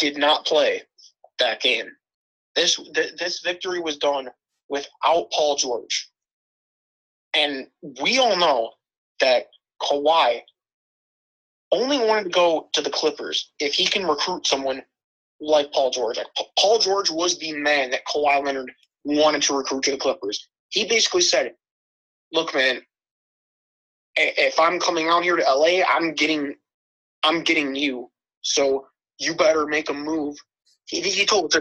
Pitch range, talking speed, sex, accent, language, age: 140-175 Hz, 150 wpm, male, American, English, 30-49